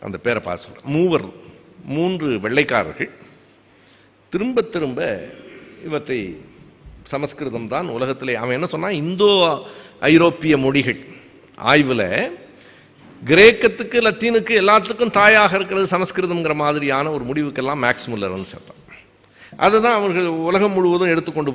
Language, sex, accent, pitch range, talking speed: Tamil, male, native, 125-175 Hz, 105 wpm